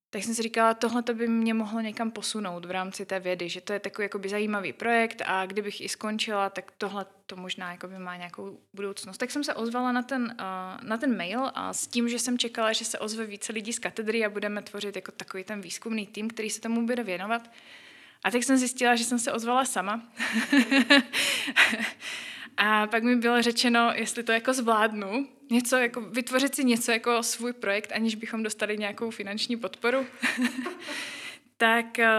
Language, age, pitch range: Czech, 20-39, 210-245 Hz